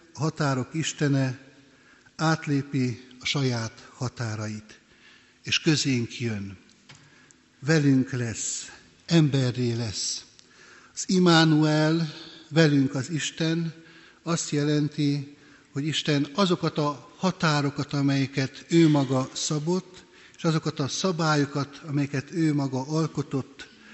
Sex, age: male, 60-79